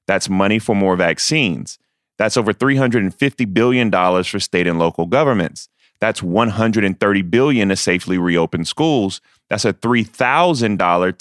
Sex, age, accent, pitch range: male, 30-49, American, 90-115 Hz